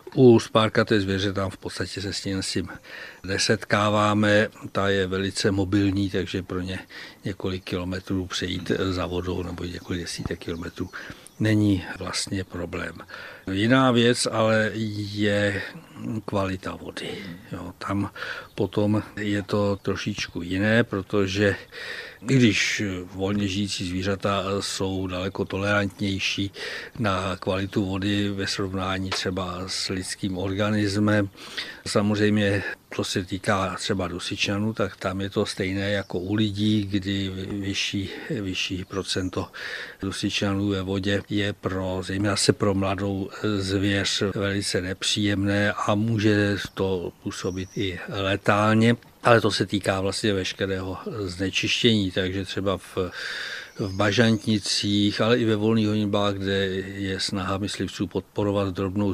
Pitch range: 95-105 Hz